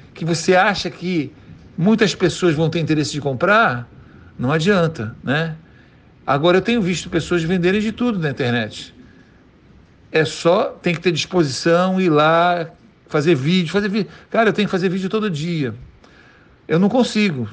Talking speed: 160 wpm